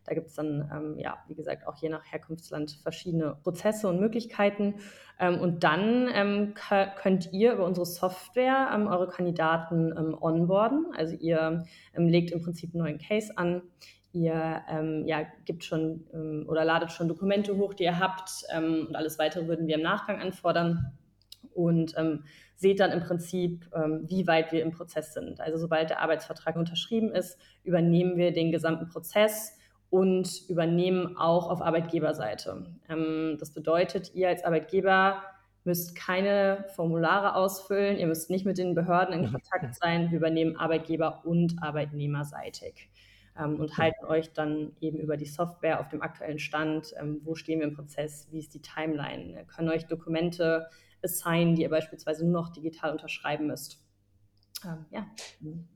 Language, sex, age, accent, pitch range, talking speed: German, female, 20-39, German, 155-180 Hz, 160 wpm